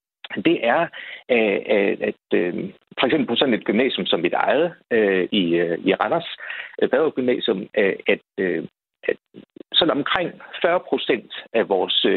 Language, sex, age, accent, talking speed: Danish, male, 60-79, native, 115 wpm